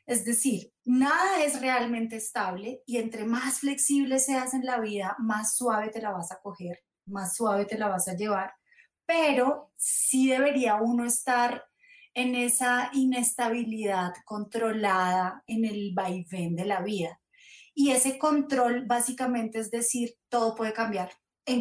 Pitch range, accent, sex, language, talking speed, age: 210-260 Hz, Colombian, female, Spanish, 145 wpm, 30-49